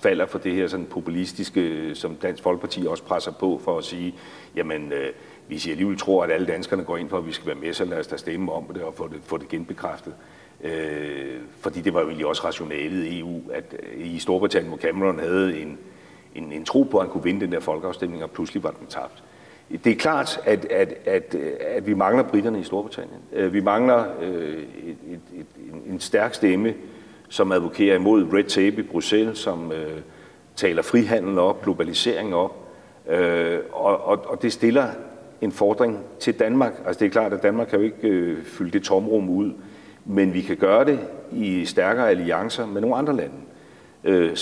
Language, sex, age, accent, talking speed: Danish, male, 60-79, native, 205 wpm